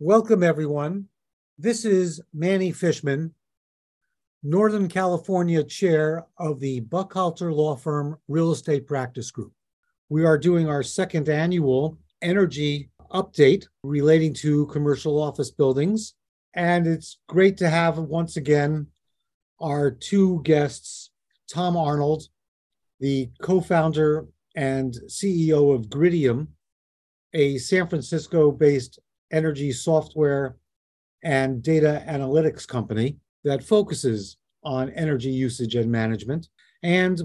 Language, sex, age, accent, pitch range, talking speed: English, male, 50-69, American, 135-170 Hz, 110 wpm